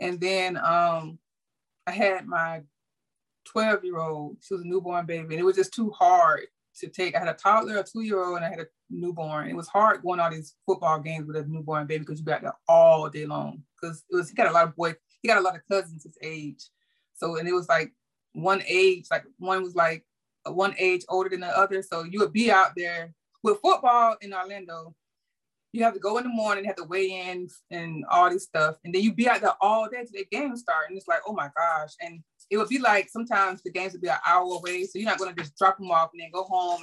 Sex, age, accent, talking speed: female, 20-39, American, 255 wpm